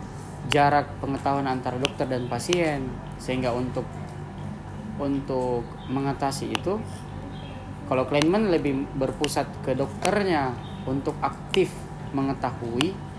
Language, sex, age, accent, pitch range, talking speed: Indonesian, male, 20-39, native, 125-155 Hz, 90 wpm